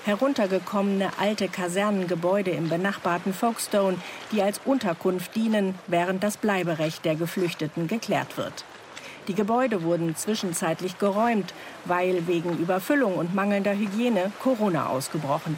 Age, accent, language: 50-69, German, German